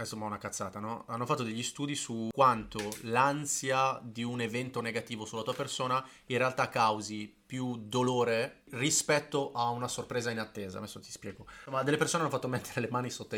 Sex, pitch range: male, 110-130 Hz